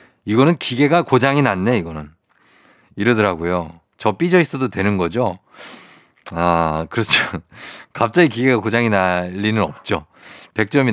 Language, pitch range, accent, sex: Korean, 105-145 Hz, native, male